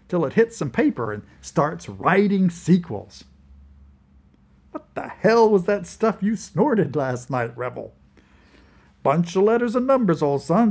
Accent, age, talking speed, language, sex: American, 50-69, 150 wpm, English, male